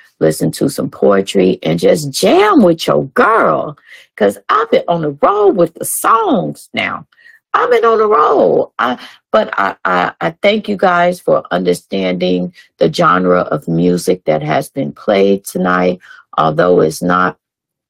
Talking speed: 160 wpm